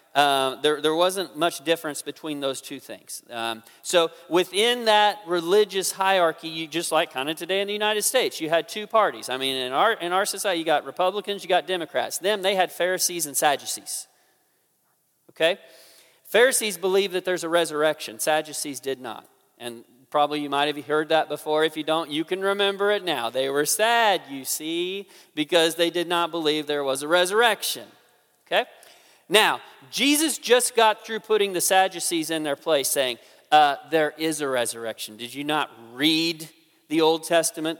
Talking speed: 180 wpm